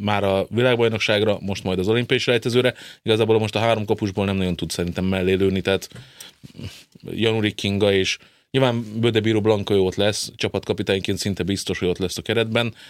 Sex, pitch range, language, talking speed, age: male, 95-110 Hz, Hungarian, 170 wpm, 30-49